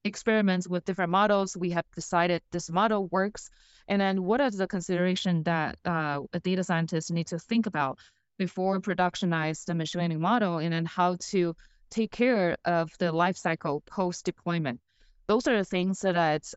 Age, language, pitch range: 20-39, English, 175-210 Hz